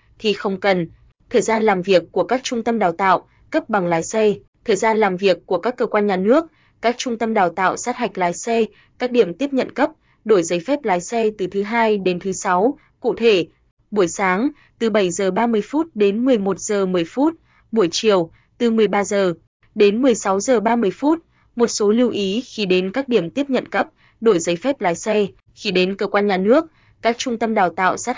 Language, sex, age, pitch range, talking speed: Vietnamese, female, 20-39, 185-230 Hz, 220 wpm